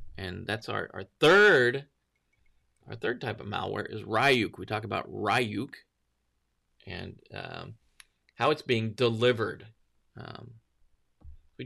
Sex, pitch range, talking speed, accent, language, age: male, 100-145 Hz, 125 wpm, American, English, 30-49